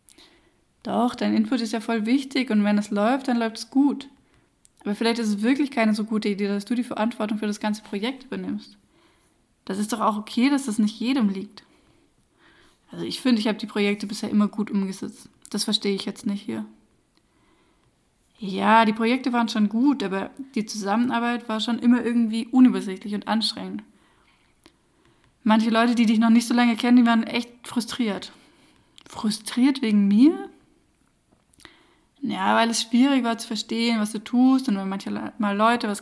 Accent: German